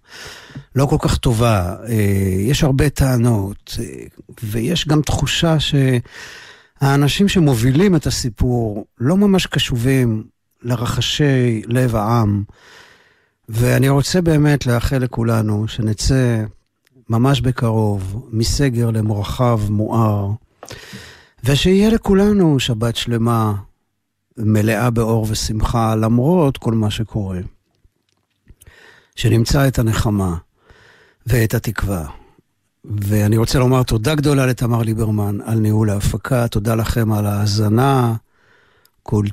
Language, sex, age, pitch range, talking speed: Hebrew, male, 60-79, 110-140 Hz, 95 wpm